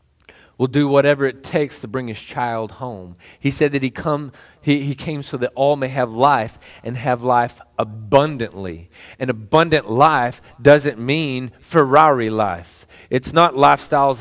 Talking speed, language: 160 wpm, English